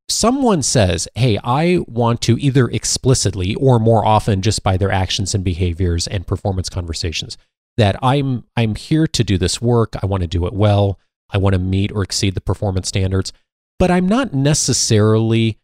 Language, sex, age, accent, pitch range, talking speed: English, male, 30-49, American, 95-125 Hz, 180 wpm